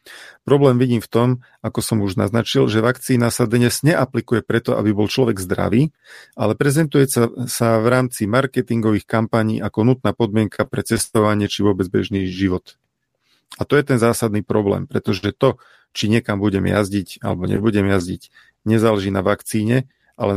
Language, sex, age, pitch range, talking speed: Slovak, male, 40-59, 100-120 Hz, 155 wpm